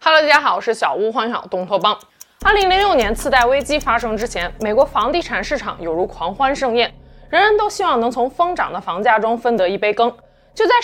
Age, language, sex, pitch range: 20-39, Chinese, female, 220-315 Hz